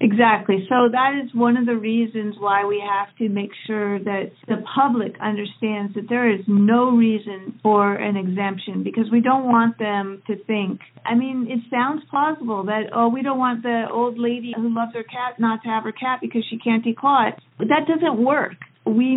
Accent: American